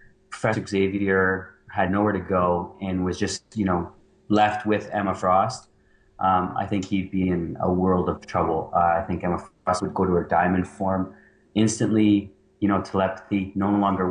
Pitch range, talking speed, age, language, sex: 95-100 Hz, 180 wpm, 30-49, English, male